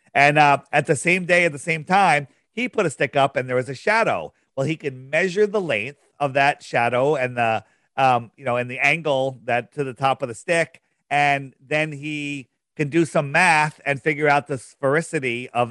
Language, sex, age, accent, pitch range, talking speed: English, male, 40-59, American, 125-155 Hz, 220 wpm